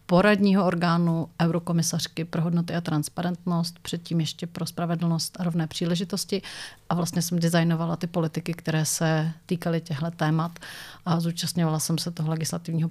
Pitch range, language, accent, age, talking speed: 165-175 Hz, Czech, native, 30-49, 145 wpm